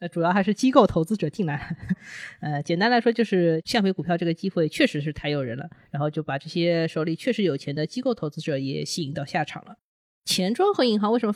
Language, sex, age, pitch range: Chinese, female, 20-39, 155-210 Hz